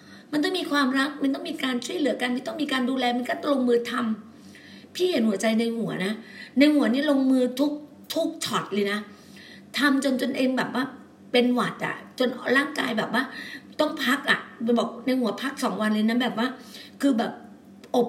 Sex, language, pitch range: female, Thai, 230-275 Hz